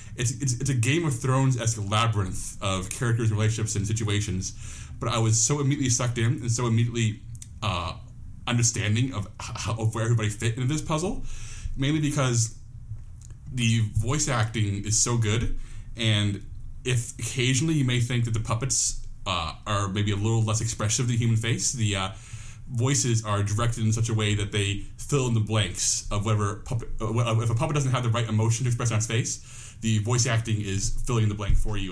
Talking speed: 195 wpm